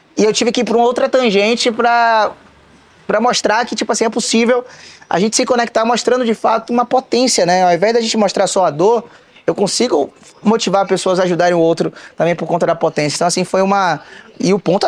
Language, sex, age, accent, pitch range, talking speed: Portuguese, male, 20-39, Brazilian, 145-200 Hz, 215 wpm